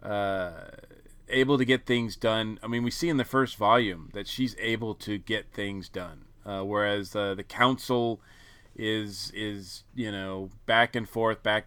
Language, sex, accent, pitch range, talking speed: English, male, American, 105-130 Hz, 175 wpm